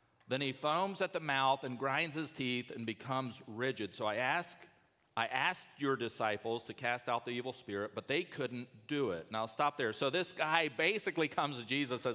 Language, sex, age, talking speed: English, male, 50-69, 205 wpm